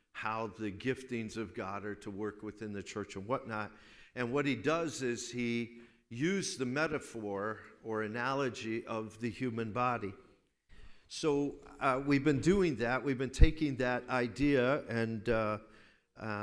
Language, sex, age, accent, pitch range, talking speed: English, male, 50-69, American, 115-140 Hz, 145 wpm